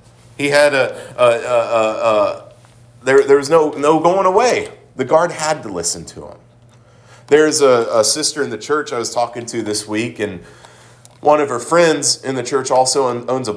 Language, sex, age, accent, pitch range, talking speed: English, male, 40-59, American, 120-160 Hz, 200 wpm